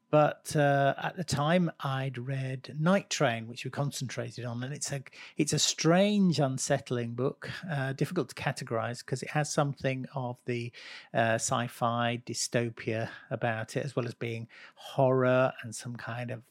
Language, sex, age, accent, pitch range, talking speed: English, male, 50-69, British, 115-150 Hz, 165 wpm